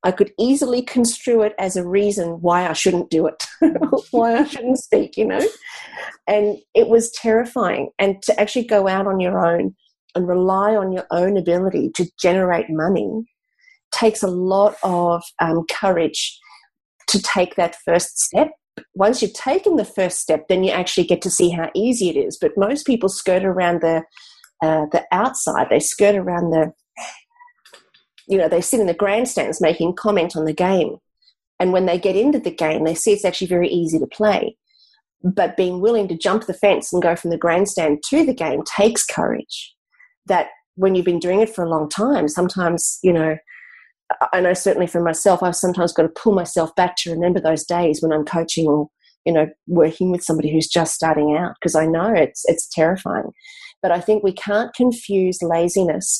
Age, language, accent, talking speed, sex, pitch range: 30-49, English, Australian, 190 wpm, female, 170-220 Hz